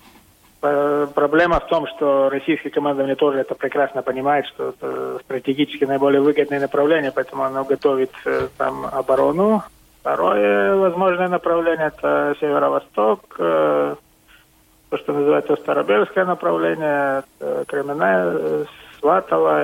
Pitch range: 105-155 Hz